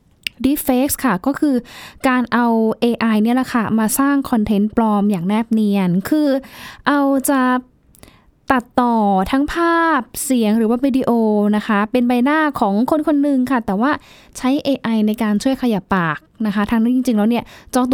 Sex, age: female, 10-29